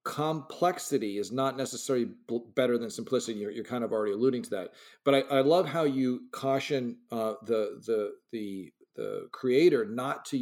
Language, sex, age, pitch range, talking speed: English, male, 40-59, 120-155 Hz, 175 wpm